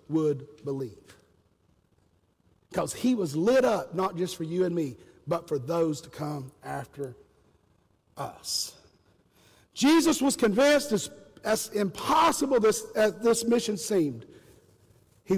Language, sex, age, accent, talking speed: English, male, 50-69, American, 125 wpm